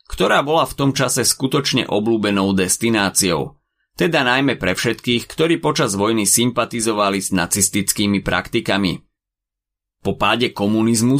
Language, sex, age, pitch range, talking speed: Slovak, male, 30-49, 100-135 Hz, 120 wpm